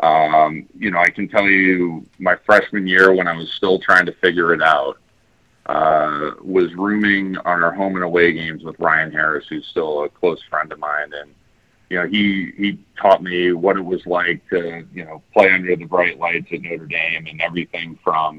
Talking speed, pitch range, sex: 205 wpm, 80-95 Hz, male